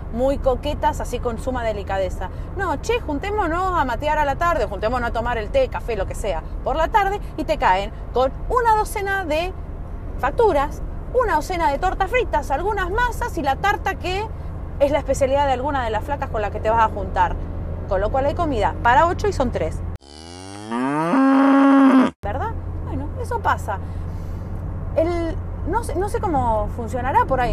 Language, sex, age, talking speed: Spanish, female, 30-49, 180 wpm